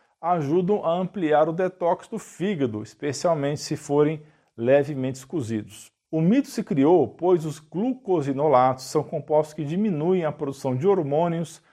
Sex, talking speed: male, 140 wpm